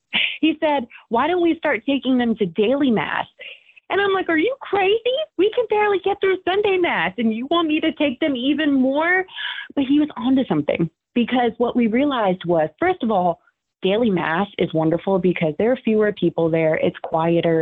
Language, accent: English, American